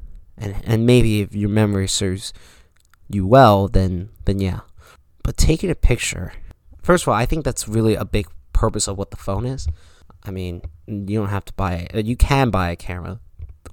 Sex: male